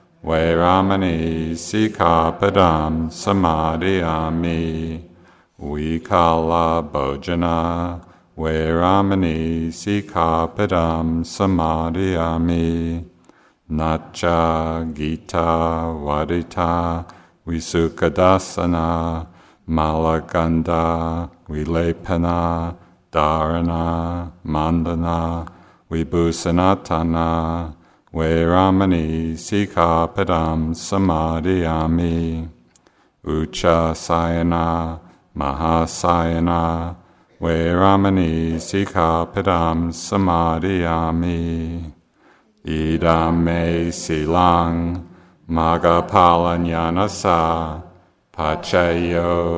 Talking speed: 45 wpm